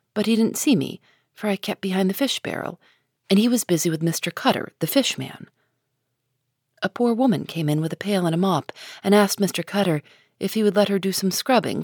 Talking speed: 220 wpm